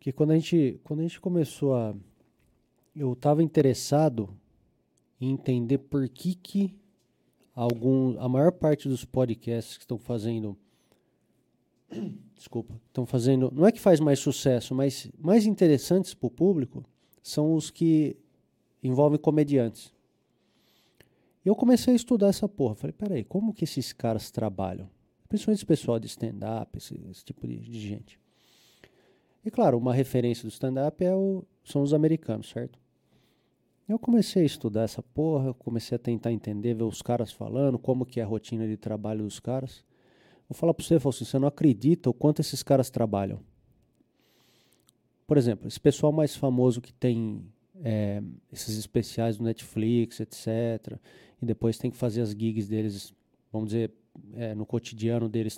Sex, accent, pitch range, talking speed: male, Brazilian, 115-150 Hz, 155 wpm